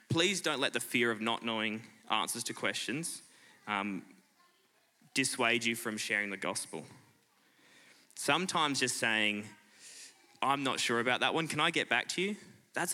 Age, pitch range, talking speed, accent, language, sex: 20-39, 105-135 Hz, 160 wpm, Australian, English, male